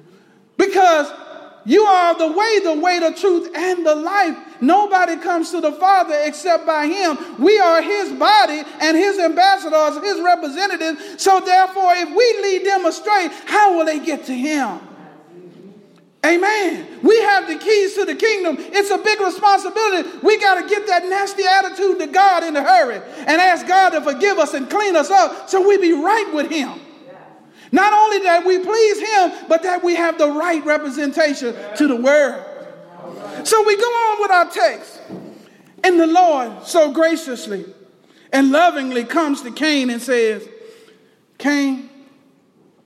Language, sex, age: English, male, 40-59